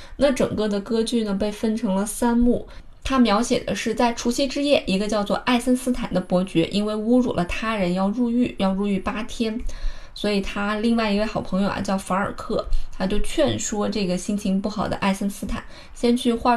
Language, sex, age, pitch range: Chinese, female, 20-39, 195-245 Hz